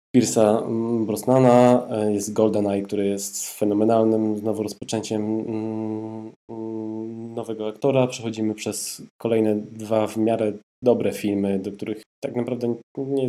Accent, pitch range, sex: native, 100-115 Hz, male